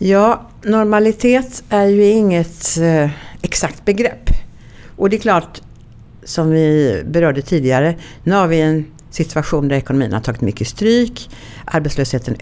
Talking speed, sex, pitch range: 130 wpm, female, 140-180 Hz